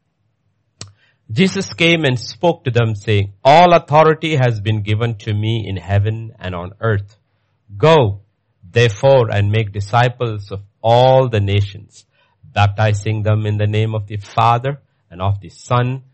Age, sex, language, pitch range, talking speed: 50-69, male, English, 100-130 Hz, 150 wpm